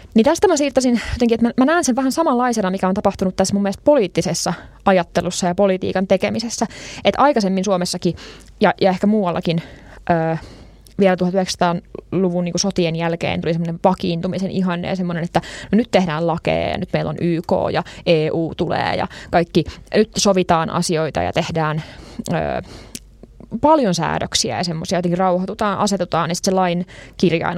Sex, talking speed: female, 150 wpm